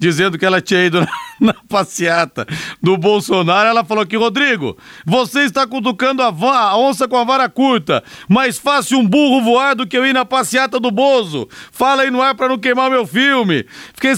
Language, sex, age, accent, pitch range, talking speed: Portuguese, male, 40-59, Brazilian, 190-245 Hz, 205 wpm